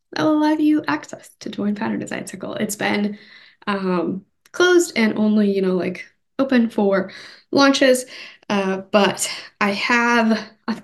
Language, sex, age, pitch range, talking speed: English, female, 10-29, 200-250 Hz, 150 wpm